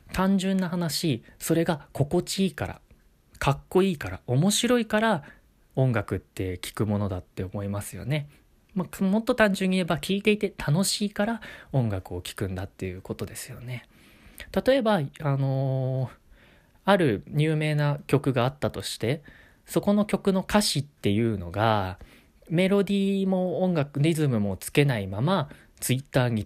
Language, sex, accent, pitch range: Japanese, male, native, 115-190 Hz